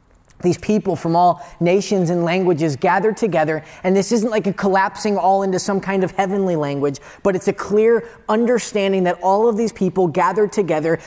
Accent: American